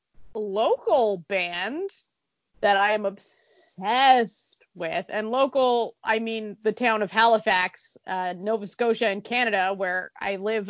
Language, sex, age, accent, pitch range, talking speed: English, female, 30-49, American, 205-265 Hz, 130 wpm